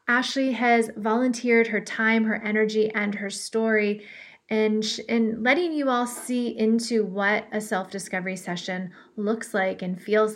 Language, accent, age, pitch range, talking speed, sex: English, American, 30-49, 205-235 Hz, 145 wpm, female